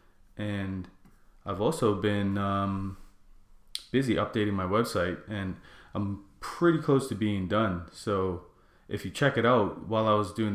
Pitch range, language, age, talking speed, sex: 95-115 Hz, English, 20-39, 150 wpm, male